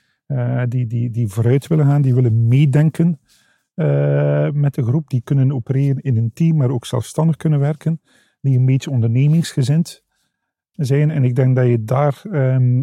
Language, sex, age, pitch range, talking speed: Dutch, male, 50-69, 120-145 Hz, 175 wpm